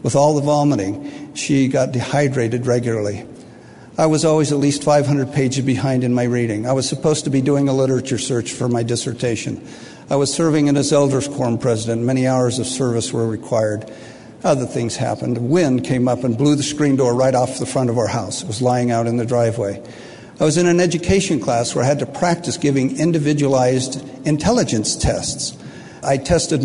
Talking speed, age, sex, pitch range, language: 200 wpm, 50-69, male, 125-145 Hz, English